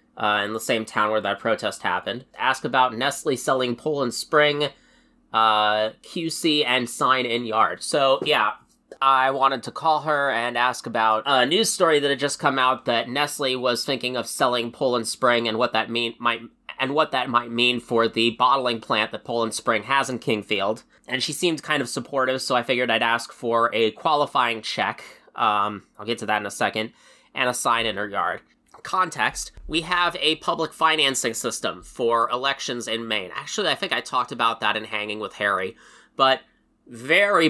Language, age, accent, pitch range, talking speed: English, 20-39, American, 115-140 Hz, 185 wpm